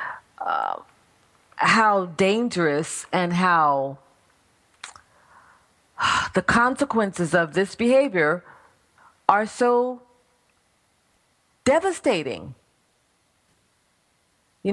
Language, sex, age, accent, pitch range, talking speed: English, female, 40-59, American, 185-245 Hz, 55 wpm